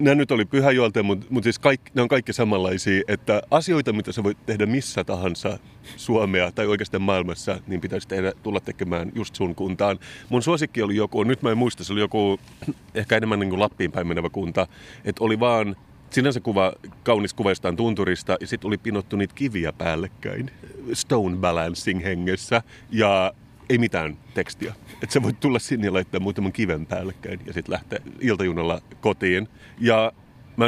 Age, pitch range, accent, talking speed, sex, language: 30-49, 95-120 Hz, native, 175 wpm, male, Finnish